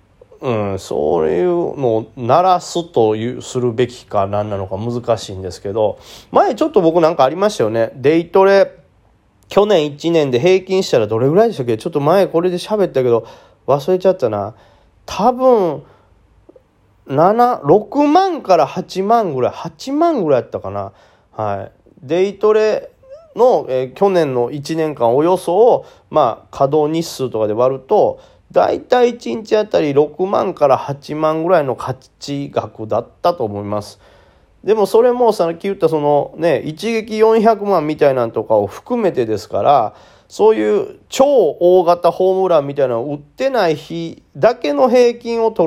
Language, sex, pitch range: Japanese, male, 130-215 Hz